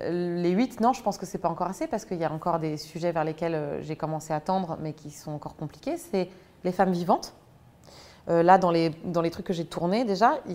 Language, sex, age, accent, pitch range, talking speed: French, female, 20-39, French, 170-220 Hz, 255 wpm